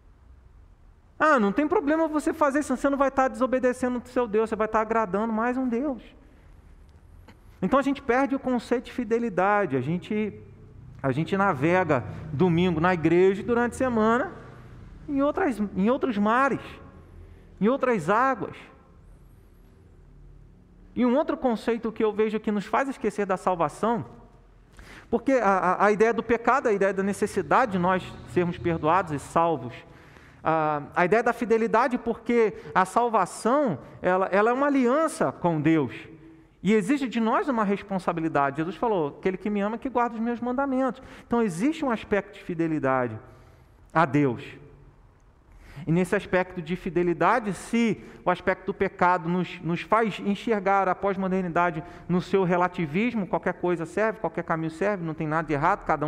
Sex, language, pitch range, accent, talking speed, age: male, Portuguese, 155-230 Hz, Brazilian, 160 wpm, 40-59